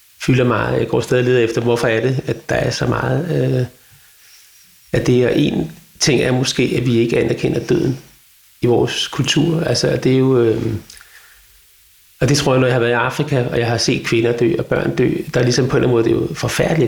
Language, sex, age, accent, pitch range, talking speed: Danish, male, 40-59, native, 115-135 Hz, 235 wpm